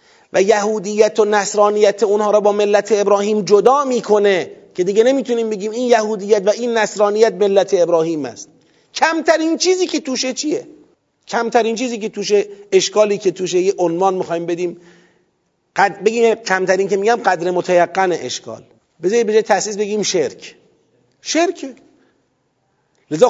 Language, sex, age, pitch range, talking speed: Persian, male, 40-59, 175-255 Hz, 135 wpm